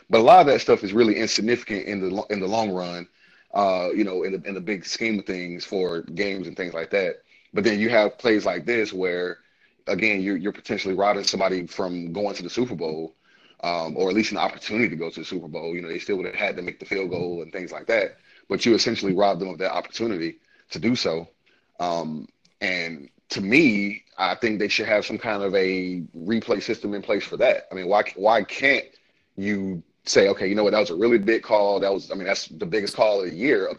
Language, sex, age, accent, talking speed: English, male, 30-49, American, 250 wpm